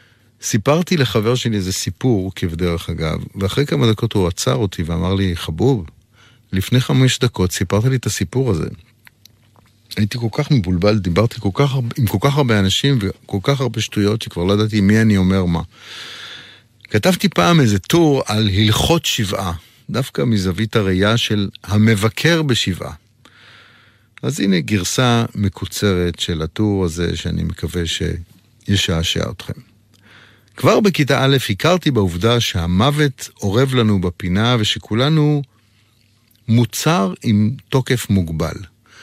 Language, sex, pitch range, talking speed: Hebrew, male, 95-125 Hz, 130 wpm